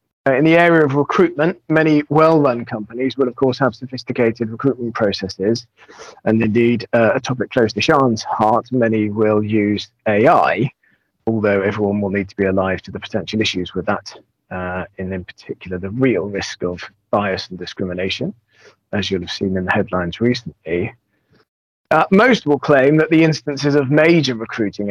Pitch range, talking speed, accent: 105-150 Hz, 170 wpm, British